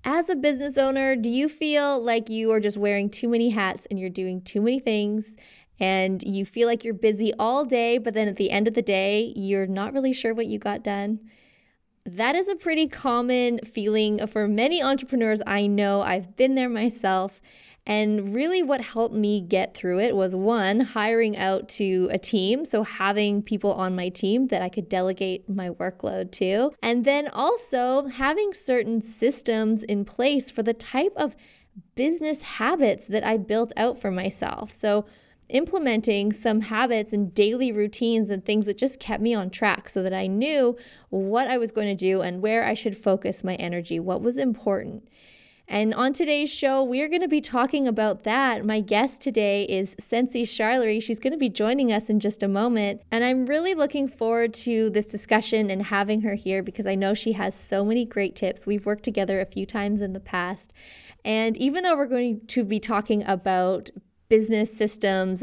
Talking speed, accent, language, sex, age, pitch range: 195 wpm, American, English, female, 20-39, 200-245 Hz